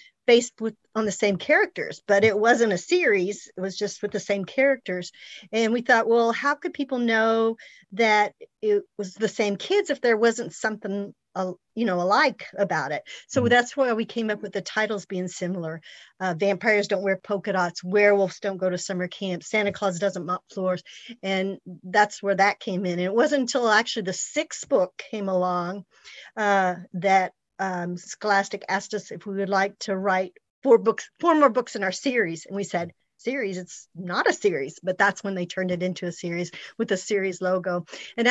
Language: English